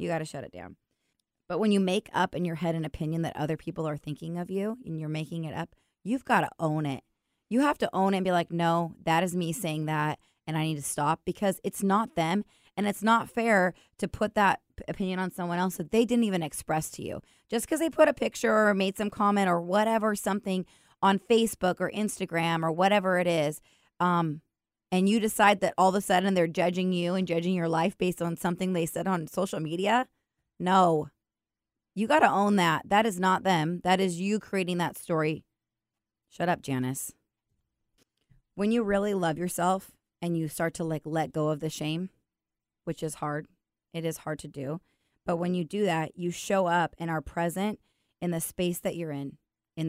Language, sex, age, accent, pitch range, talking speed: English, female, 20-39, American, 160-195 Hz, 215 wpm